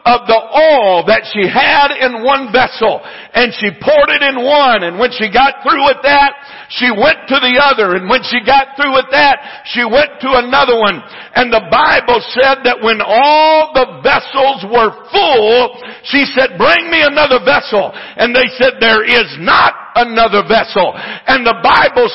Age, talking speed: 60-79, 180 wpm